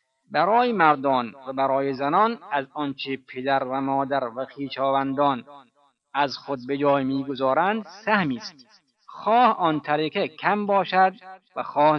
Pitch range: 135-180 Hz